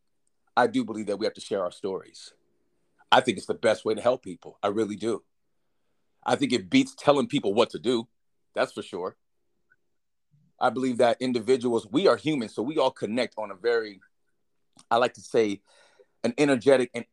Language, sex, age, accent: English, male, 40-59, American